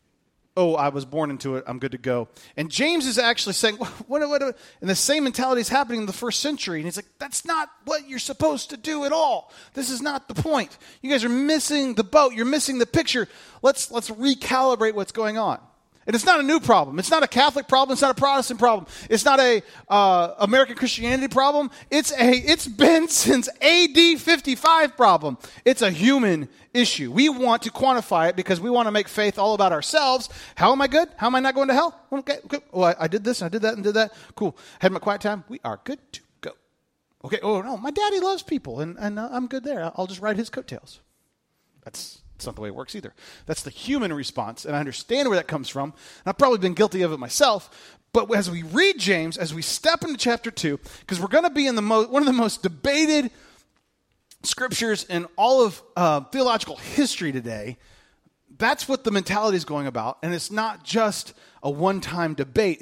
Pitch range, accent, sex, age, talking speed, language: 175-275 Hz, American, male, 30-49, 225 wpm, English